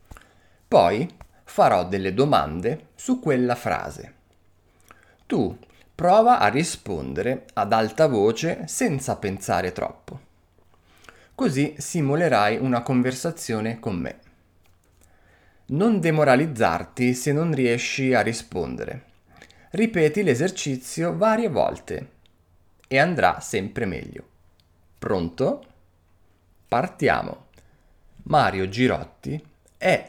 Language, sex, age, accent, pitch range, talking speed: Italian, male, 30-49, native, 85-125 Hz, 85 wpm